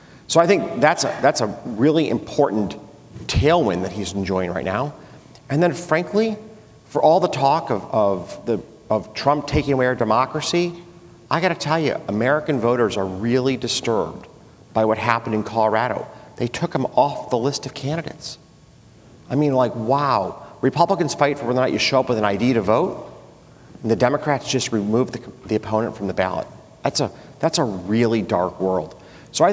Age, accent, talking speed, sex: 40-59, American, 185 wpm, male